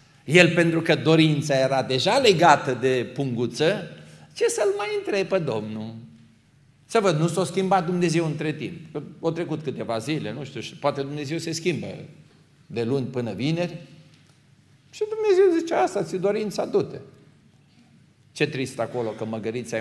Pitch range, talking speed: 135-175 Hz, 150 wpm